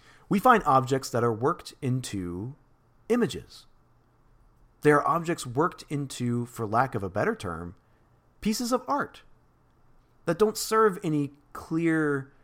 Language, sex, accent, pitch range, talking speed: English, male, American, 115-150 Hz, 125 wpm